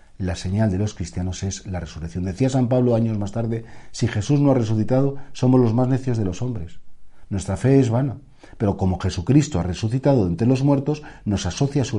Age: 40-59